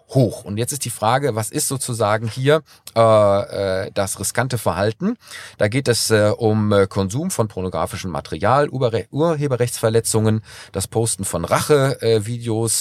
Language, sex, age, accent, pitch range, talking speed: German, male, 40-59, German, 110-135 Hz, 140 wpm